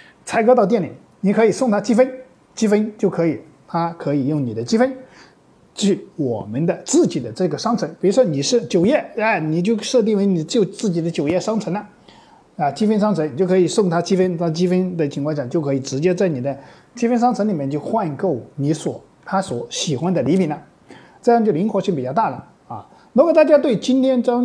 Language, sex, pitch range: Chinese, male, 160-230 Hz